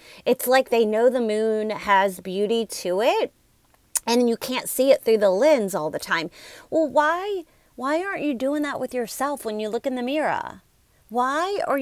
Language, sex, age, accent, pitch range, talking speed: English, female, 30-49, American, 225-310 Hz, 195 wpm